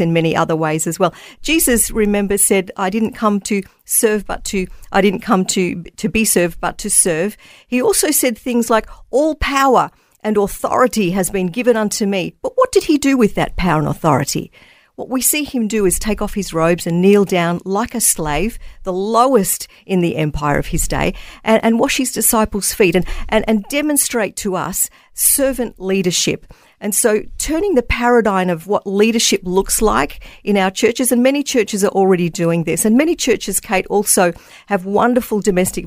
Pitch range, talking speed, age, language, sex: 185-235 Hz, 195 wpm, 50-69, English, female